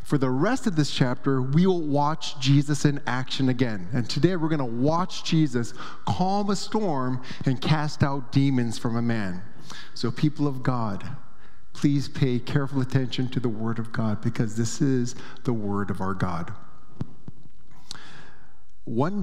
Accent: American